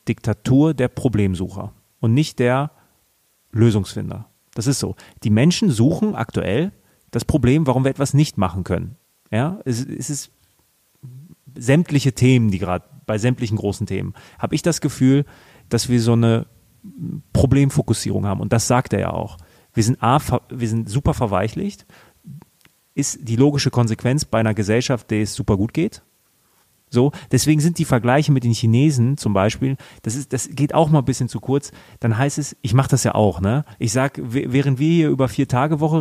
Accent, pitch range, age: German, 115-145 Hz, 30-49